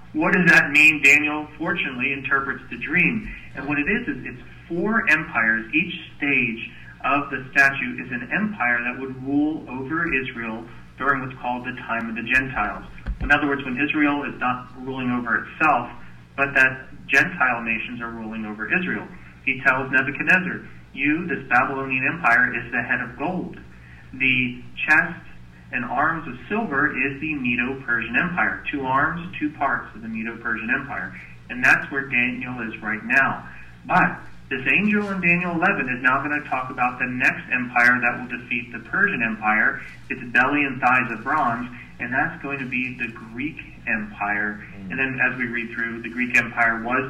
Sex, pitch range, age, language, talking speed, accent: male, 115-140 Hz, 40-59, English, 175 wpm, American